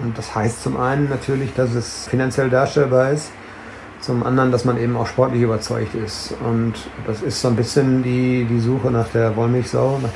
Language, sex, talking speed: German, male, 195 wpm